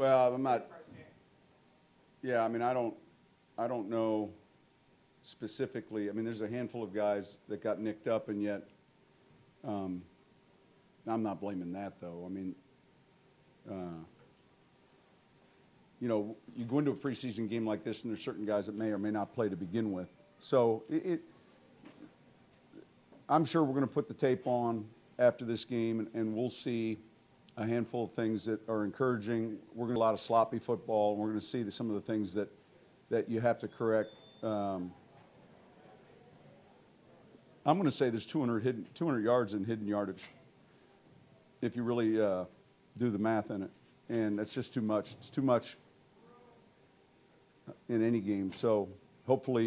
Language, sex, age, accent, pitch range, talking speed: English, male, 50-69, American, 105-120 Hz, 165 wpm